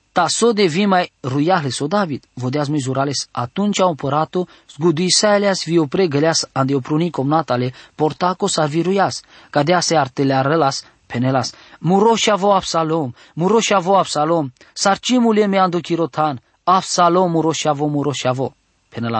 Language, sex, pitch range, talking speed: English, male, 135-180 Hz, 95 wpm